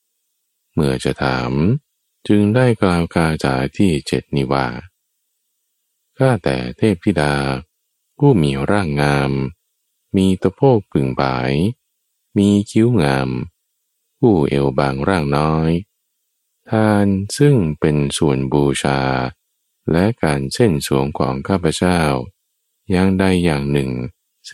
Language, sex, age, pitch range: Thai, male, 20-39, 70-95 Hz